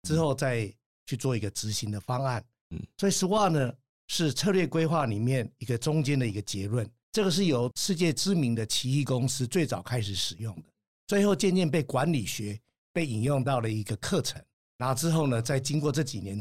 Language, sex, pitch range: Chinese, male, 110-150 Hz